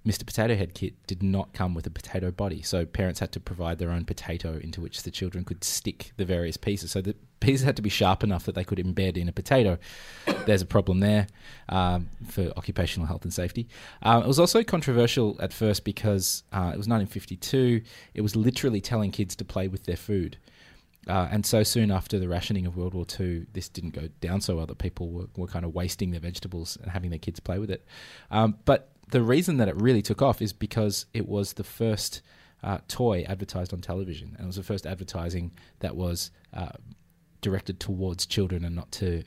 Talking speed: 220 wpm